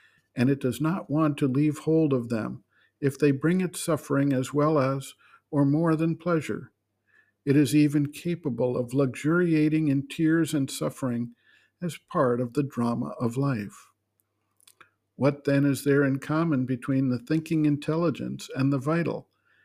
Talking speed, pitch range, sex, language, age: 160 wpm, 130-155 Hz, male, English, 50-69